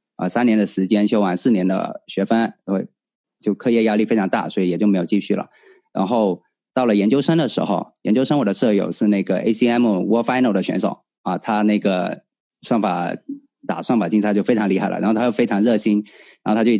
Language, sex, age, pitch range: Chinese, male, 20-39, 100-115 Hz